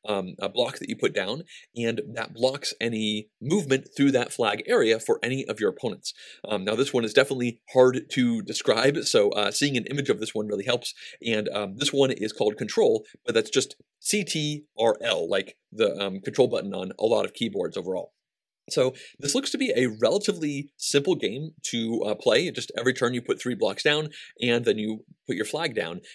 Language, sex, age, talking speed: English, male, 30-49, 205 wpm